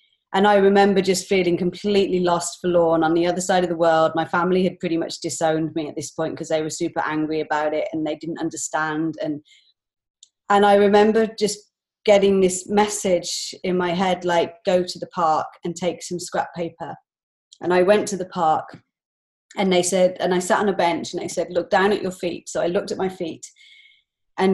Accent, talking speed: British, 215 wpm